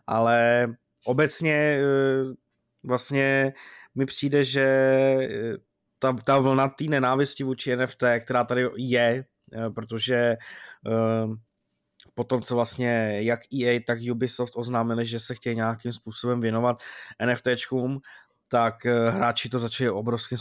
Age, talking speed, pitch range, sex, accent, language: 20-39, 110 wpm, 120-135 Hz, male, native, Czech